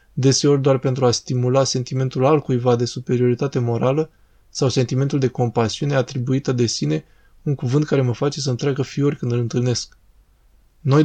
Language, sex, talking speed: Romanian, male, 155 wpm